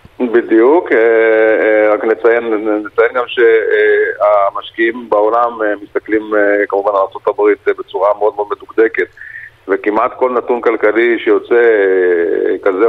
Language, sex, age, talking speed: Hebrew, male, 40-59, 100 wpm